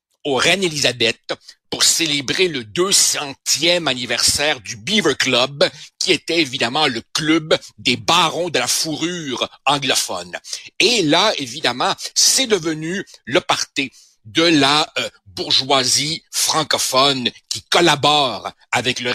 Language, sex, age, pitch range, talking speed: French, male, 60-79, 130-170 Hz, 120 wpm